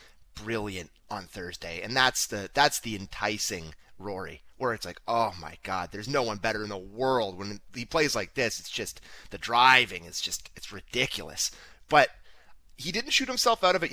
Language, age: English, 30-49